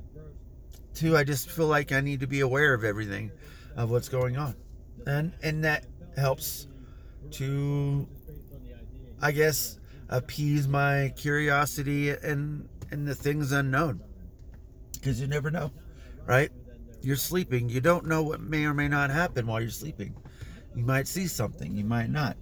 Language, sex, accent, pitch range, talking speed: English, male, American, 110-150 Hz, 150 wpm